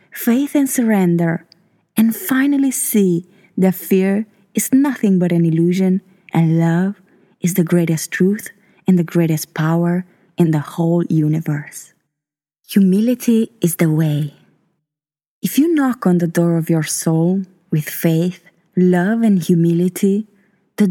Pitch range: 170-205 Hz